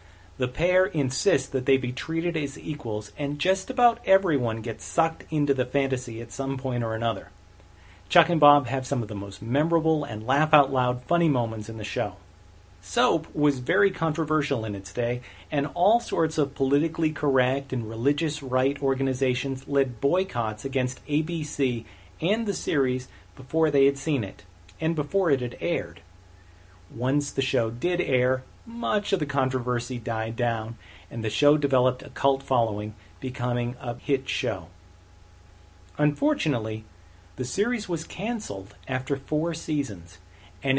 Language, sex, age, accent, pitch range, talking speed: English, male, 40-59, American, 110-150 Hz, 155 wpm